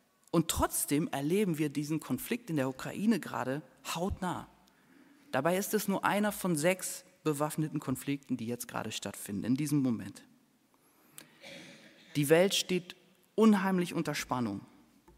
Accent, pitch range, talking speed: German, 135-180 Hz, 130 wpm